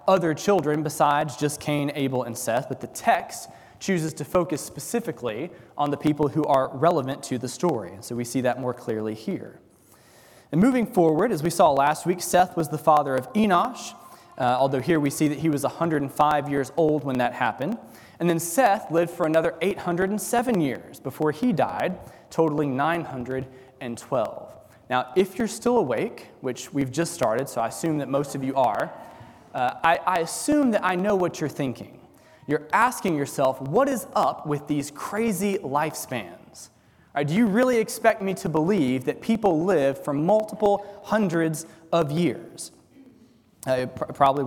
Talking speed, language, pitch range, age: 170 wpm, English, 140-180 Hz, 20-39